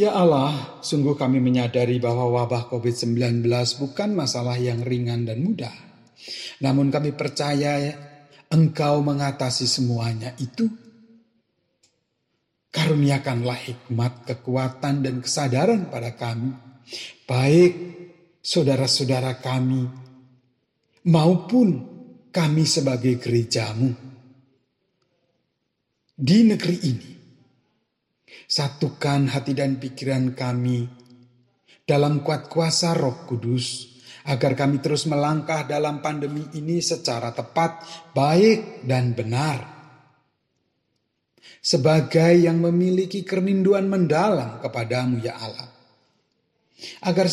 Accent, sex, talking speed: native, male, 85 wpm